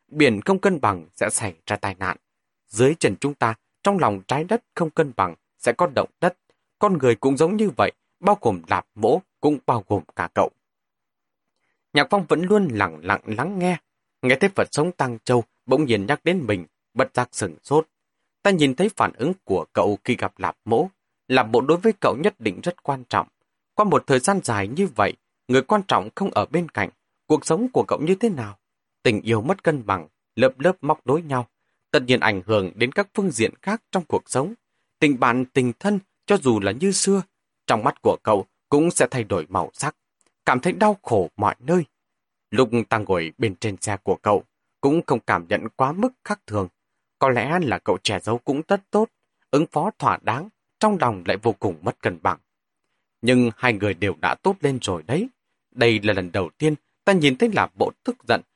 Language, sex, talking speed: Vietnamese, male, 215 wpm